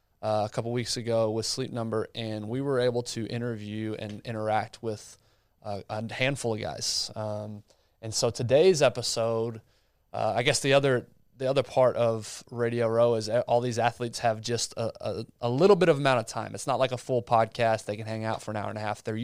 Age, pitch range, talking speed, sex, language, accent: 20-39, 110-125 Hz, 220 wpm, male, English, American